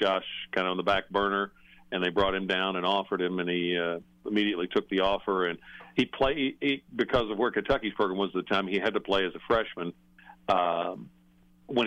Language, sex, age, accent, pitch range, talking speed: English, male, 50-69, American, 90-105 Hz, 220 wpm